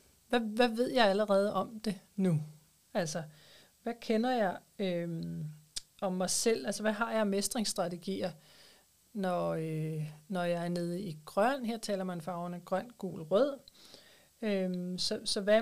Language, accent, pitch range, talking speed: Danish, native, 175-220 Hz, 140 wpm